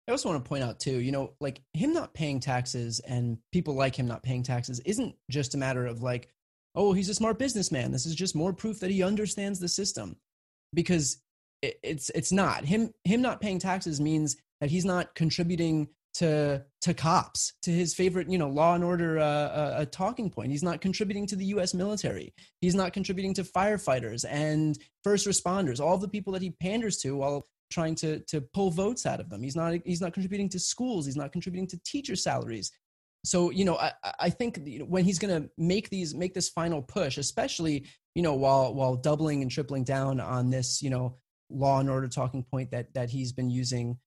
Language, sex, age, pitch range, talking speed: English, male, 20-39, 135-190 Hz, 215 wpm